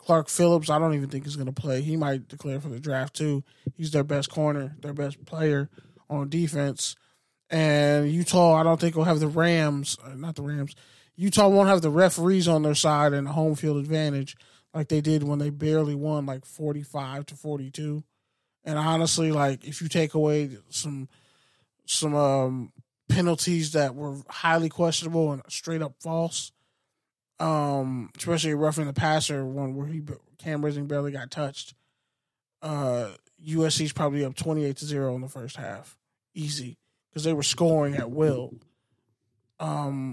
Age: 20-39